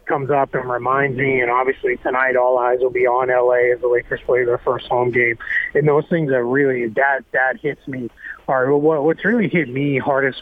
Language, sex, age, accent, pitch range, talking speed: English, male, 30-49, American, 130-150 Hz, 225 wpm